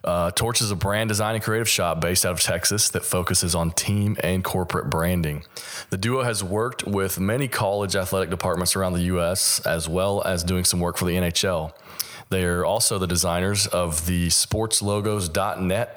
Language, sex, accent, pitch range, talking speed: English, male, American, 85-105 Hz, 185 wpm